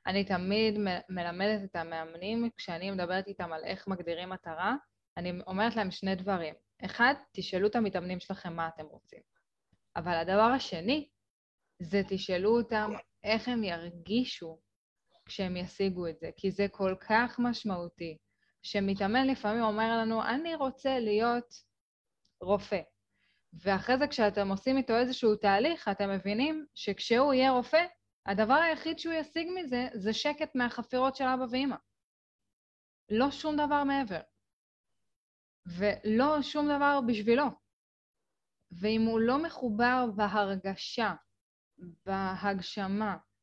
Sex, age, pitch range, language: female, 10-29, 190-245 Hz, Hebrew